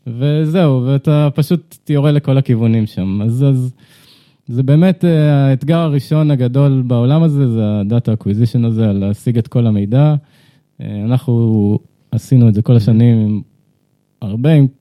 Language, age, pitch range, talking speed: Hebrew, 20-39, 110-145 Hz, 135 wpm